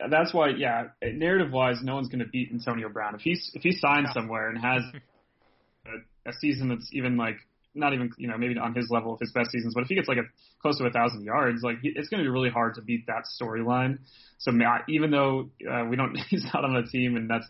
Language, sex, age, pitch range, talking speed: English, male, 30-49, 115-130 Hz, 260 wpm